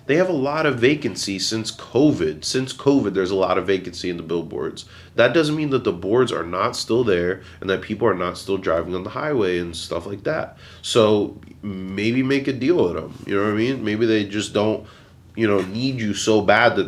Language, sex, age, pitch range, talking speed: English, male, 30-49, 95-130 Hz, 230 wpm